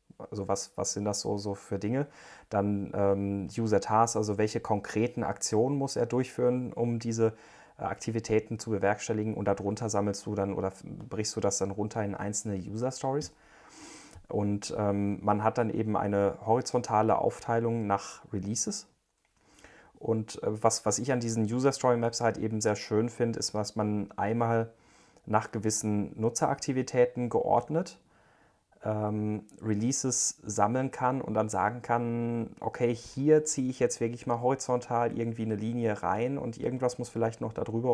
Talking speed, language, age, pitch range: 150 wpm, German, 30-49, 105-120 Hz